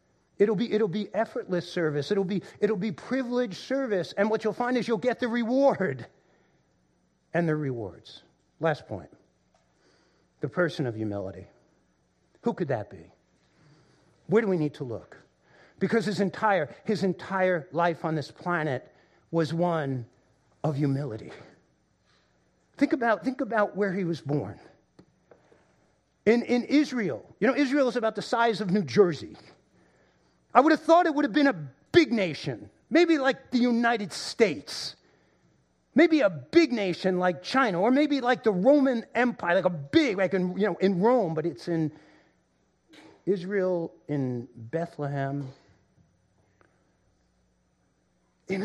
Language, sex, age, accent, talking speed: English, male, 50-69, American, 145 wpm